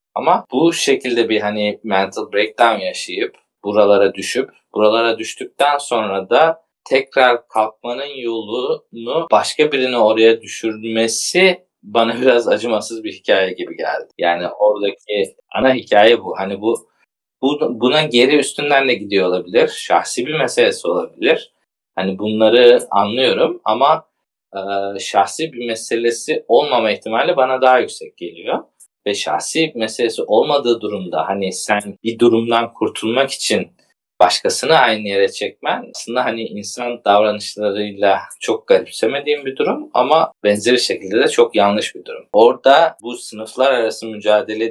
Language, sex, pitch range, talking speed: Turkish, male, 105-160 Hz, 130 wpm